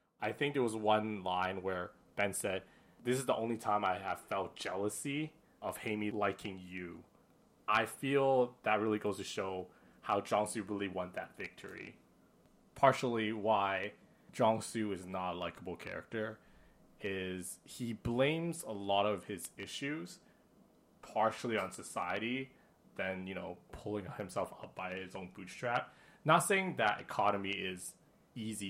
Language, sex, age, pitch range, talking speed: English, male, 20-39, 95-120 Hz, 150 wpm